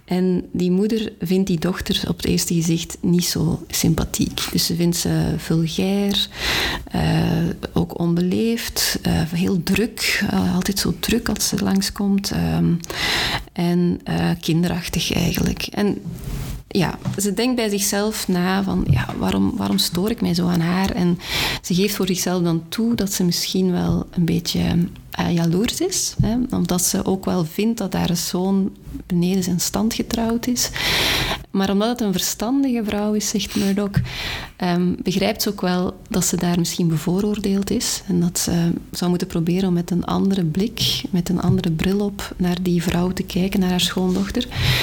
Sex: female